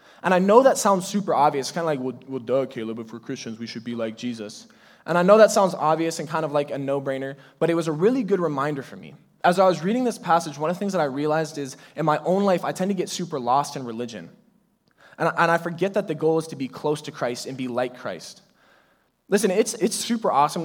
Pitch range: 140-170 Hz